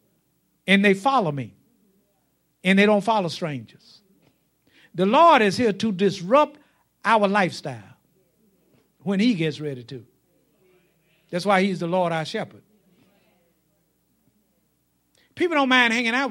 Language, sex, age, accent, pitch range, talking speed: English, male, 60-79, American, 180-240 Hz, 125 wpm